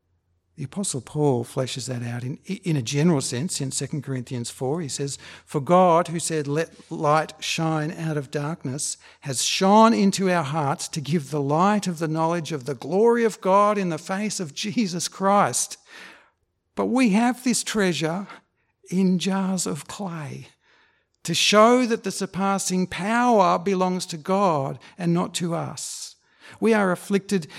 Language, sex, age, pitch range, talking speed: English, male, 60-79, 145-195 Hz, 165 wpm